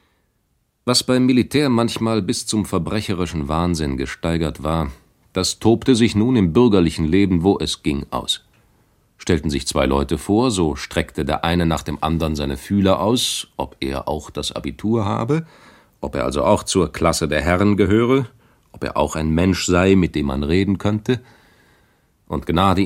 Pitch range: 80-105 Hz